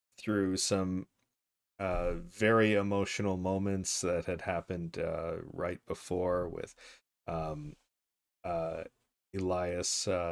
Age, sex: 30-49, male